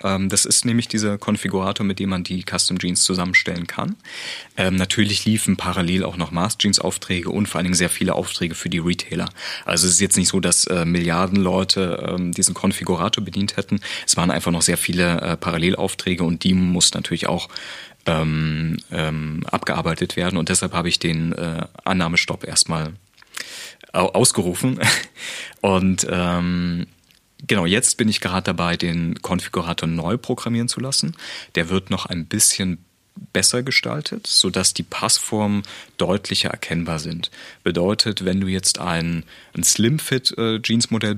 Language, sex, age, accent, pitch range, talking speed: German, male, 30-49, German, 85-100 Hz, 155 wpm